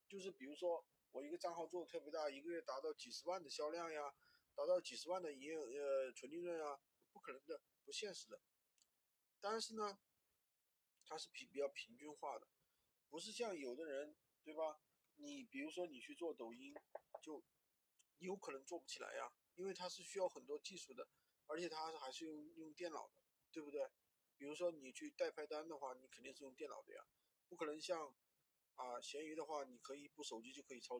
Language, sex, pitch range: Chinese, male, 140-195 Hz